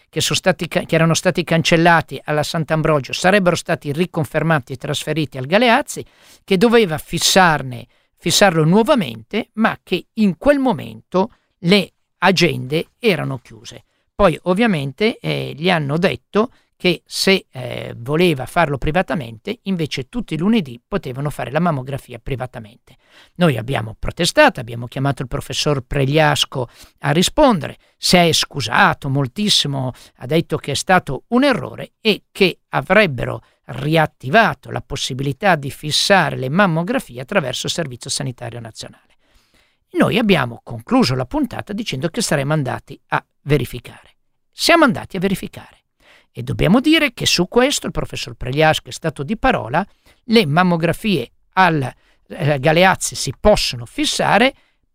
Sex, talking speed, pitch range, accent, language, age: male, 130 wpm, 140-195 Hz, native, Italian, 50-69